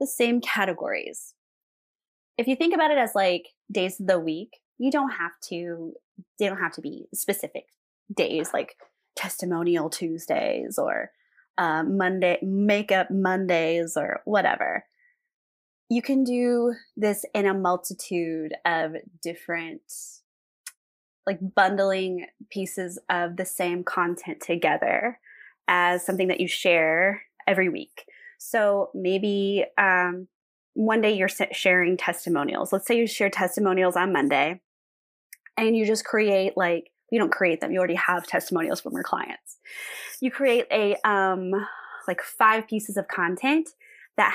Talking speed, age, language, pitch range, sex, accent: 135 wpm, 20-39, English, 180-220 Hz, female, American